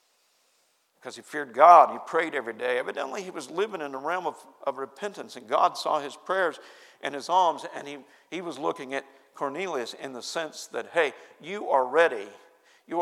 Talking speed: 195 wpm